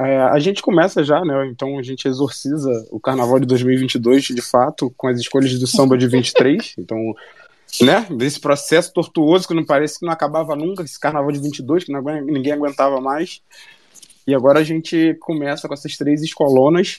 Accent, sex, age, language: Brazilian, male, 20-39, Portuguese